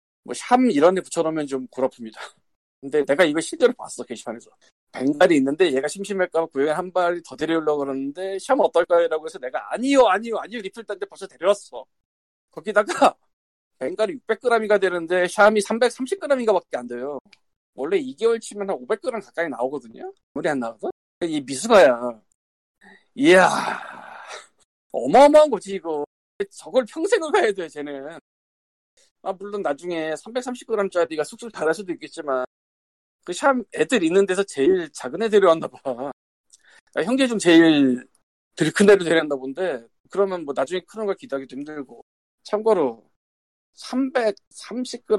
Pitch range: 145-225 Hz